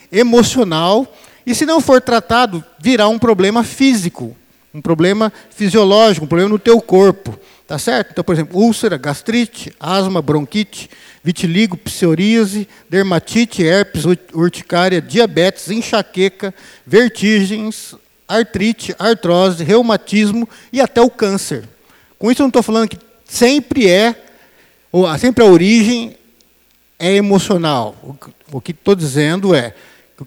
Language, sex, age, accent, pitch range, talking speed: Portuguese, male, 50-69, Brazilian, 175-220 Hz, 125 wpm